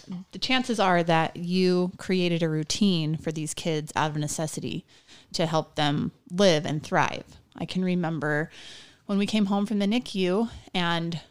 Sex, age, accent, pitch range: female, 20-39, American, 160-195 Hz